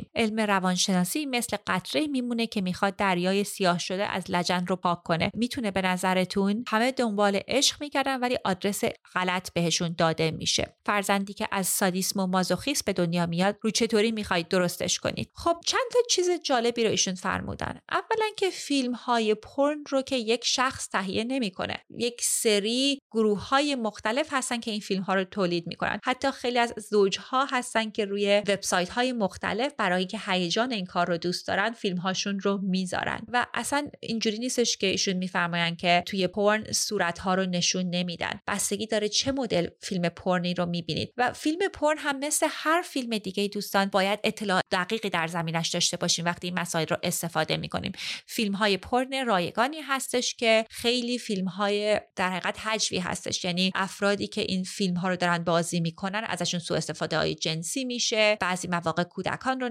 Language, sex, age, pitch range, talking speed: Persian, female, 30-49, 180-240 Hz, 170 wpm